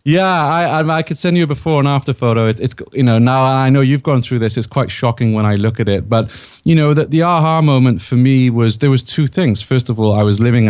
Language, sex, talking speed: English, male, 285 wpm